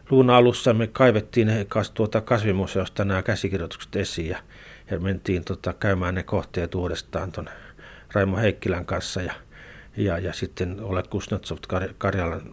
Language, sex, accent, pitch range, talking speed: Finnish, male, native, 95-115 Hz, 125 wpm